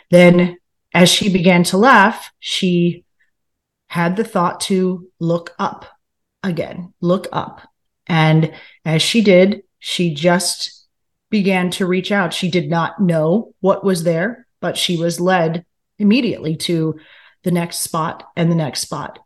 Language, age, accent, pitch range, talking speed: English, 30-49, American, 170-190 Hz, 145 wpm